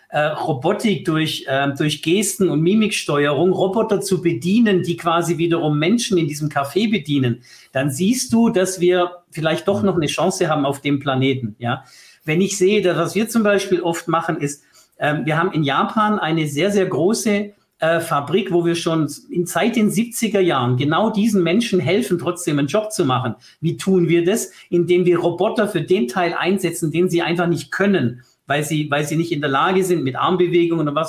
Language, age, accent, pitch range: German, 50-69, German, 150-195 Hz